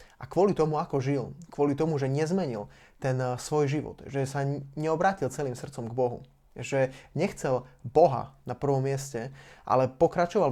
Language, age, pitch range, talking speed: Slovak, 20-39, 125-145 Hz, 155 wpm